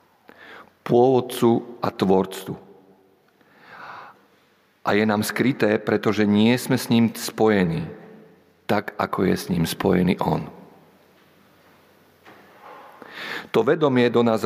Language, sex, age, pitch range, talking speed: Slovak, male, 50-69, 95-115 Hz, 100 wpm